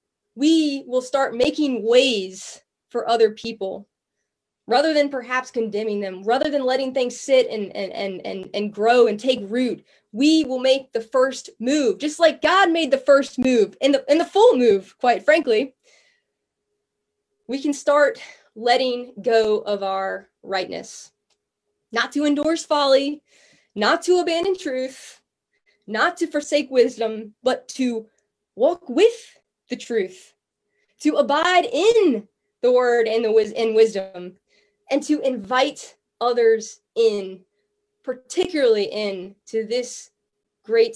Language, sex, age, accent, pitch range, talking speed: English, female, 20-39, American, 225-315 Hz, 130 wpm